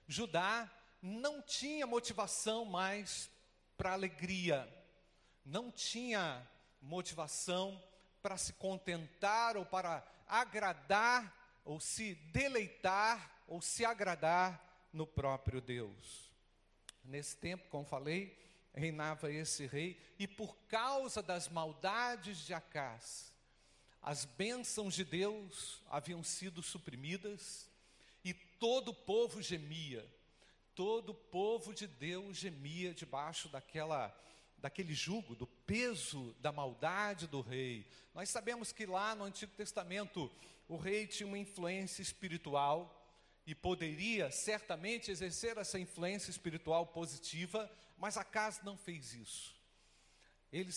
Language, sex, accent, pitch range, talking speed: Portuguese, male, Brazilian, 155-210 Hz, 110 wpm